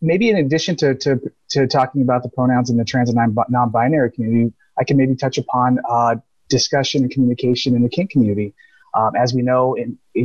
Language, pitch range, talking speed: English, 115-135 Hz, 205 wpm